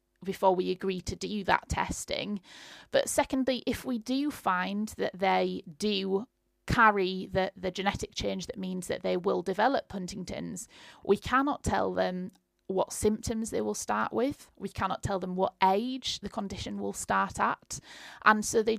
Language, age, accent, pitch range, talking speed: English, 30-49, British, 180-215 Hz, 165 wpm